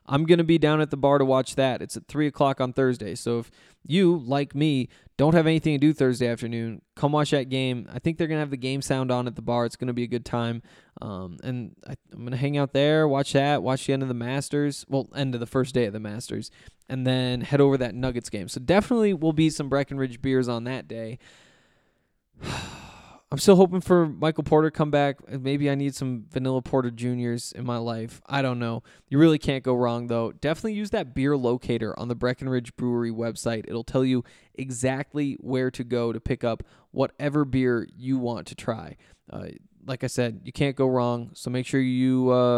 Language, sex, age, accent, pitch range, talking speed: English, male, 20-39, American, 120-145 Hz, 230 wpm